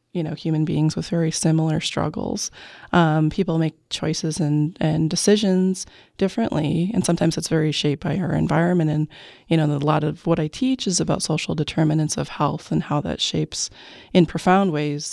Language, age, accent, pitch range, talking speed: English, 20-39, American, 155-180 Hz, 185 wpm